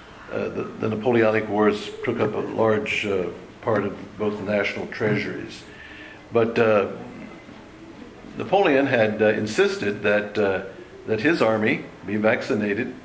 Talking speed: 135 wpm